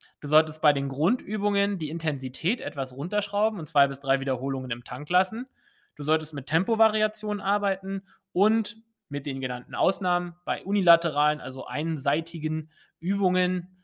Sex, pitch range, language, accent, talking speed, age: male, 140-180 Hz, English, German, 140 wpm, 20-39